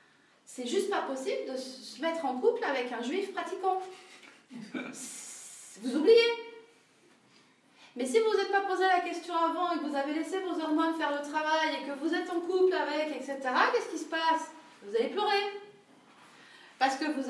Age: 30-49